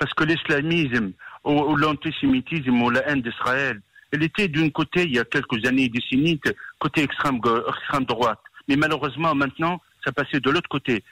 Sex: male